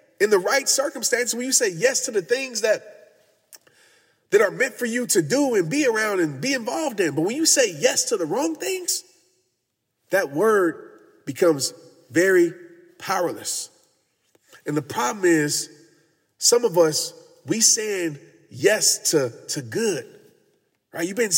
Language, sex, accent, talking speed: English, male, American, 155 wpm